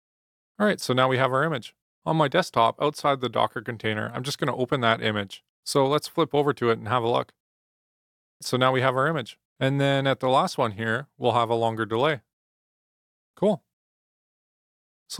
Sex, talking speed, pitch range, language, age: male, 200 wpm, 120-150 Hz, English, 20-39